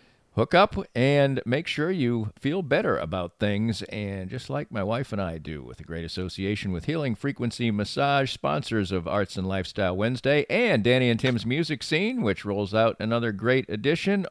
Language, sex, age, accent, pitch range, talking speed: English, male, 50-69, American, 100-130 Hz, 185 wpm